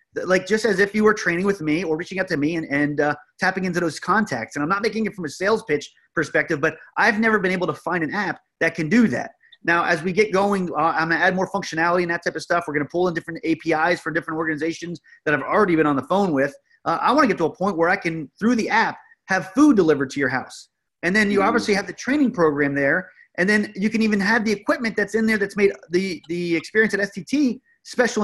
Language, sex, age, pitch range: English, male, 30-49, 165-220 Hz